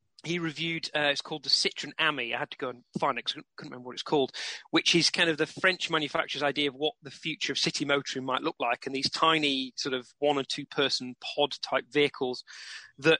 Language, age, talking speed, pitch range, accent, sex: English, 30-49, 230 wpm, 130-155 Hz, British, male